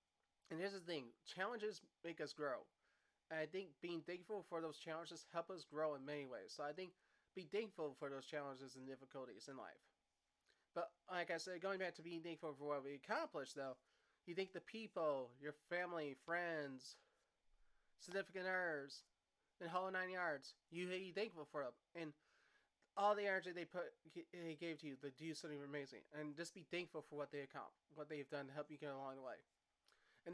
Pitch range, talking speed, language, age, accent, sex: 145-175 Hz, 195 wpm, English, 20-39, American, male